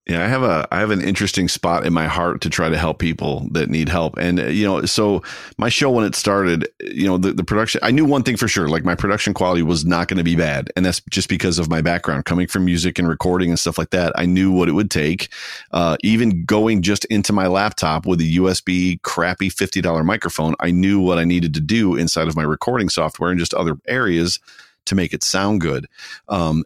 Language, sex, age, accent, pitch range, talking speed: English, male, 40-59, American, 85-100 Hz, 240 wpm